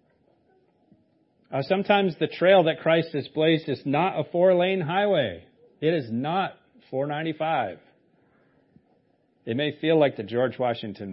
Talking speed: 125 wpm